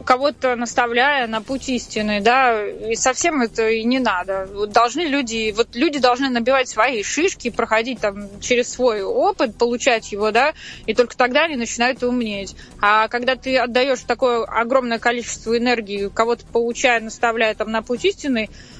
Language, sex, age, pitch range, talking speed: Russian, female, 20-39, 225-265 Hz, 160 wpm